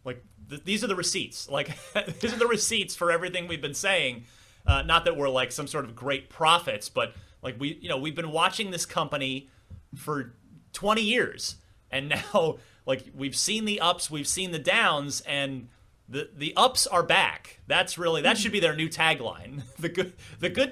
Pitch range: 110-175 Hz